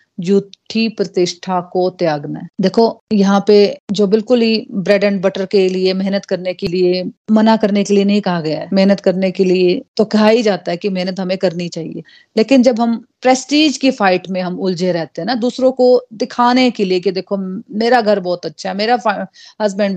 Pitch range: 180-225 Hz